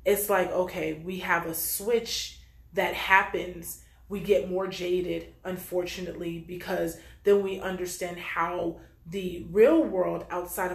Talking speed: 130 wpm